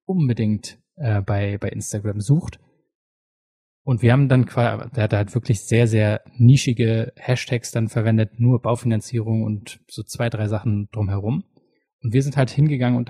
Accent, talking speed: German, 155 wpm